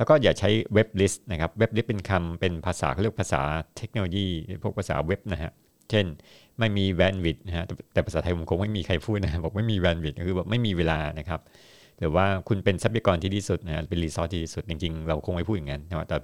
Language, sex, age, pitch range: Thai, male, 60-79, 85-105 Hz